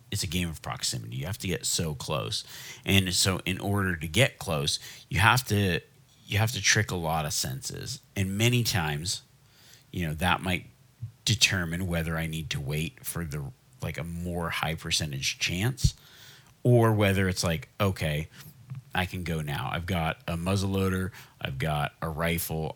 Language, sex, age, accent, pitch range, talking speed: English, male, 40-59, American, 80-120 Hz, 180 wpm